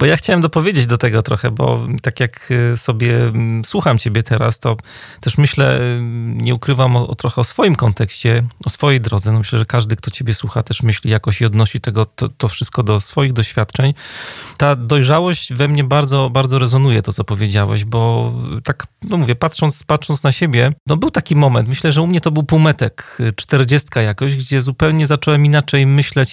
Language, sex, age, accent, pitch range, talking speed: Polish, male, 30-49, native, 120-145 Hz, 180 wpm